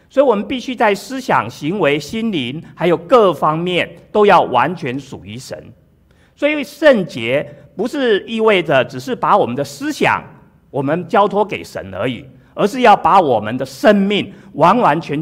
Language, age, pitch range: Chinese, 50-69, 155-245 Hz